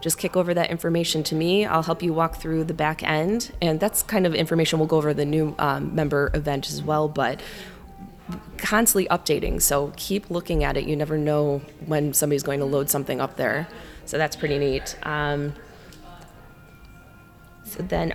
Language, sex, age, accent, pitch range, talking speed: English, female, 20-39, American, 150-175 Hz, 180 wpm